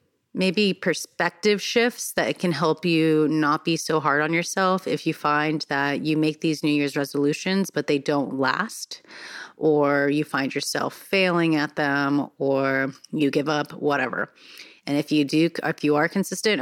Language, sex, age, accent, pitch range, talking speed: English, female, 30-49, American, 145-165 Hz, 170 wpm